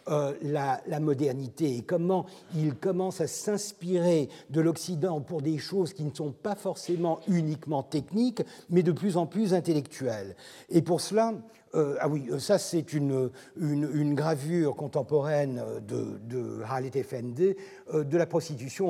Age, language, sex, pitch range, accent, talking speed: 60-79, French, male, 140-185 Hz, French, 150 wpm